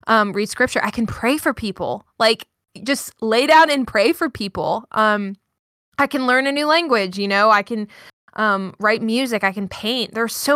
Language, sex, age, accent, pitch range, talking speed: English, female, 20-39, American, 190-235 Hz, 205 wpm